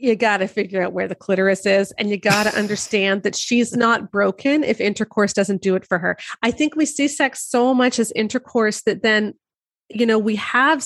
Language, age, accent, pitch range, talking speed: English, 30-49, American, 195-235 Hz, 220 wpm